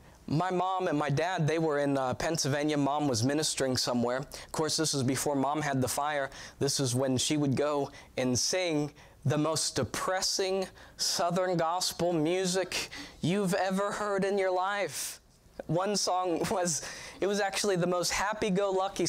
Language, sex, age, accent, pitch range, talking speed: English, male, 20-39, American, 145-185 Hz, 165 wpm